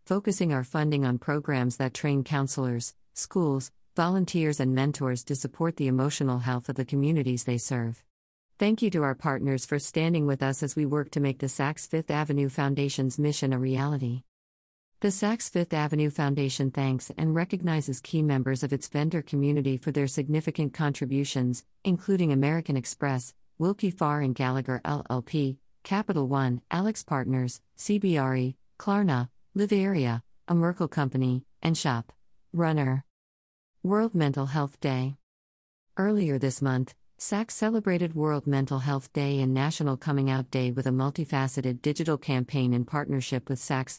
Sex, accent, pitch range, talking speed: female, American, 130-155 Hz, 150 wpm